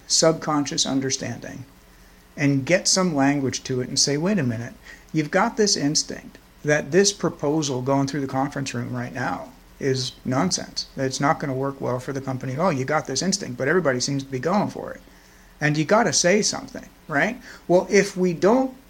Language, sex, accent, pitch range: English, male, American, 135-190 Hz